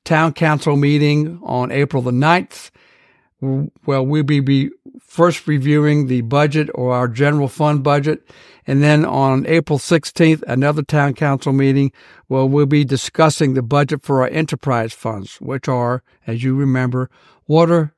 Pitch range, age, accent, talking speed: 130-155 Hz, 60-79, American, 145 wpm